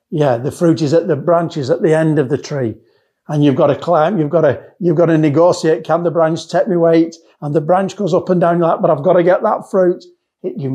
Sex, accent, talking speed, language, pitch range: male, British, 260 wpm, English, 125-170 Hz